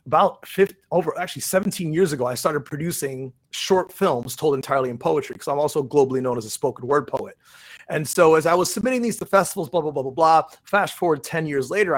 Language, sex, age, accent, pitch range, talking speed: English, male, 30-49, American, 125-160 Hz, 225 wpm